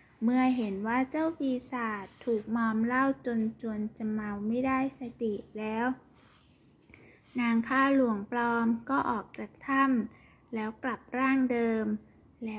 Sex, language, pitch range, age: female, Thai, 220-255 Hz, 20-39